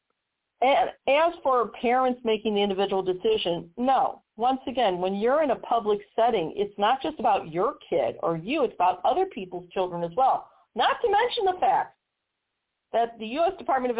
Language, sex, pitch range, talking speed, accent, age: English, female, 185-255 Hz, 180 wpm, American, 50-69